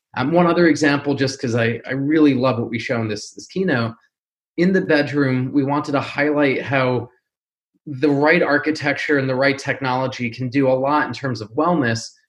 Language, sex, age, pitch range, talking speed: English, male, 20-39, 130-150 Hz, 195 wpm